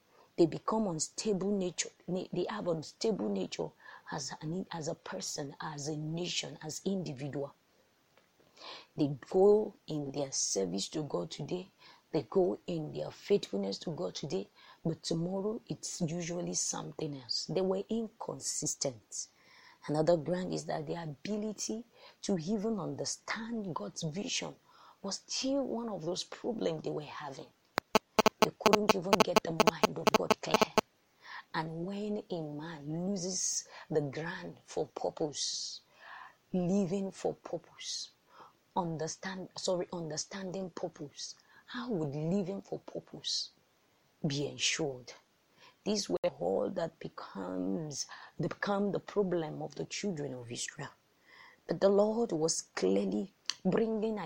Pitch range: 155-205 Hz